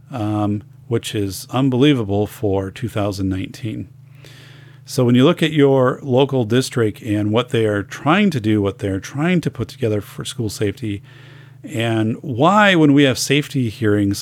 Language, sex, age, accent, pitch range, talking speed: English, male, 40-59, American, 110-135 Hz, 155 wpm